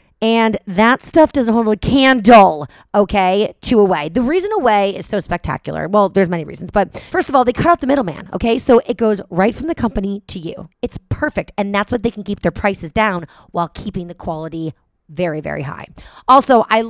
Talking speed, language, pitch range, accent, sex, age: 210 wpm, English, 175-230 Hz, American, female, 30-49